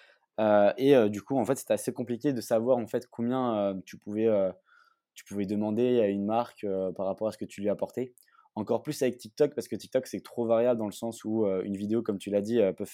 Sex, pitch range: male, 100-120 Hz